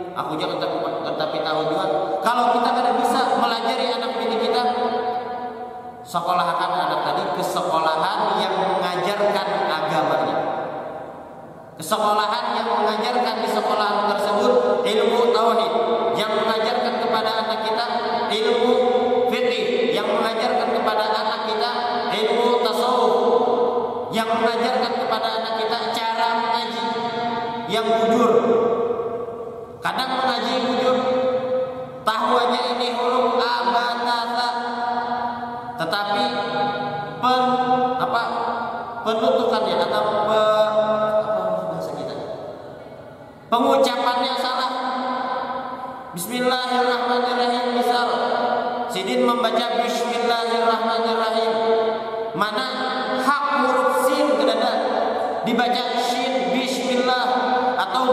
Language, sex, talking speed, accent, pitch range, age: Indonesian, male, 80 wpm, native, 220-245 Hz, 30-49